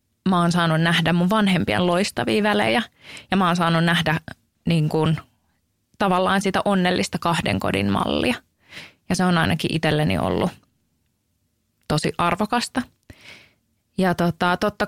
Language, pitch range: Finnish, 160-195 Hz